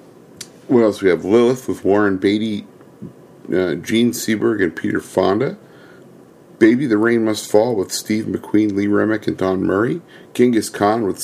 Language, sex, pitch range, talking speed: English, male, 95-125 Hz, 160 wpm